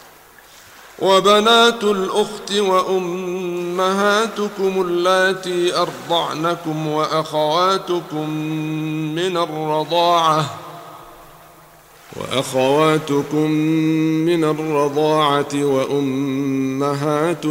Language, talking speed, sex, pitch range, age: Arabic, 40 wpm, male, 155-180 Hz, 50-69